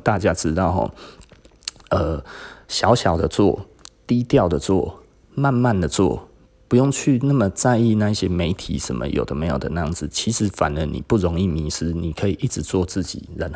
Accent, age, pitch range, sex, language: native, 20-39, 85-110 Hz, male, Chinese